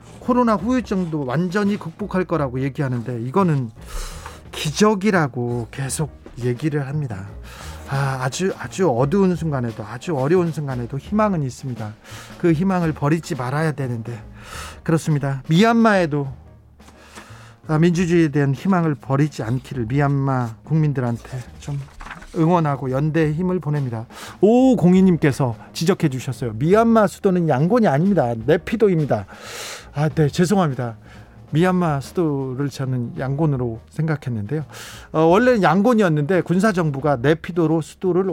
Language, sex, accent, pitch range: Korean, male, native, 125-180 Hz